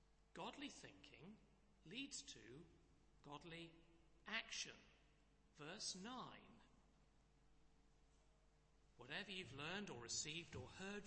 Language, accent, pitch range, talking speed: English, British, 135-210 Hz, 80 wpm